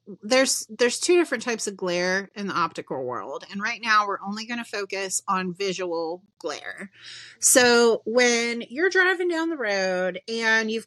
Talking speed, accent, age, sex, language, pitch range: 170 wpm, American, 30-49, female, English, 185-235 Hz